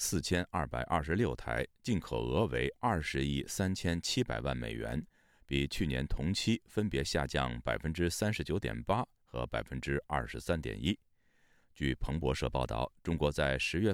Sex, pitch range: male, 70-95 Hz